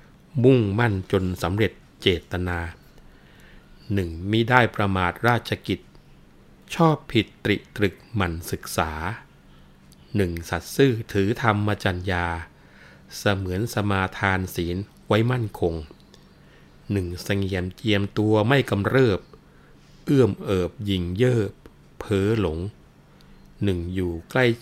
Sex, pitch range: male, 85-110 Hz